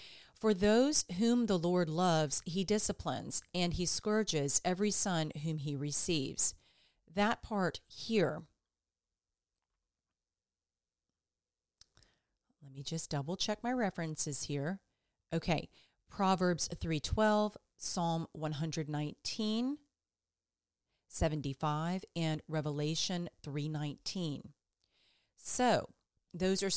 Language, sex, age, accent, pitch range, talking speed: English, female, 40-59, American, 145-190 Hz, 85 wpm